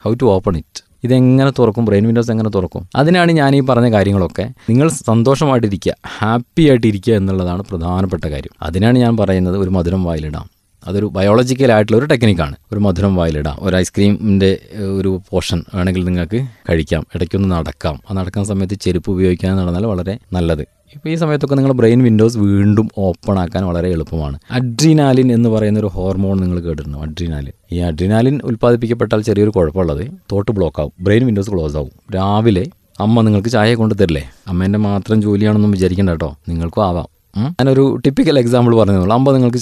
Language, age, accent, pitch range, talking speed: Malayalam, 20-39, native, 90-120 Hz, 165 wpm